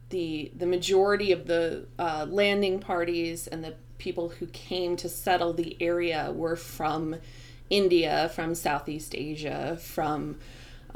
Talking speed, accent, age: 130 wpm, American, 20-39